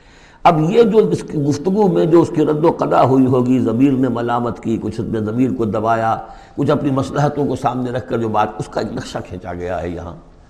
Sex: male